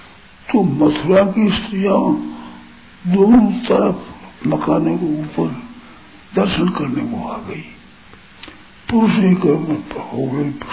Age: 60-79